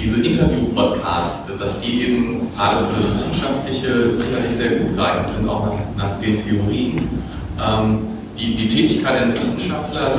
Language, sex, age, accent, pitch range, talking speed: German, male, 40-59, German, 105-130 Hz, 140 wpm